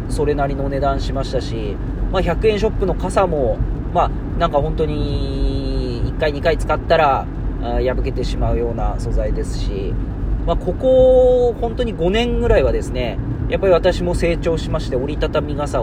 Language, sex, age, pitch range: Japanese, male, 40-59, 115-170 Hz